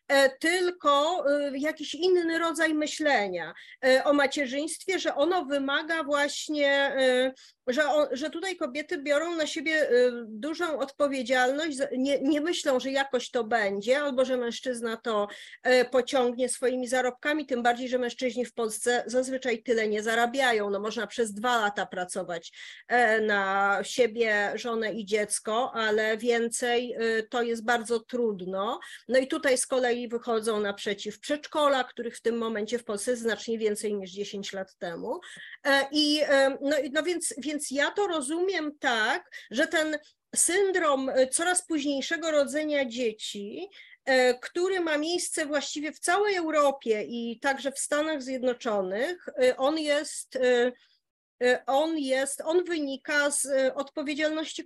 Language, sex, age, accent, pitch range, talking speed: Polish, female, 30-49, native, 235-300 Hz, 130 wpm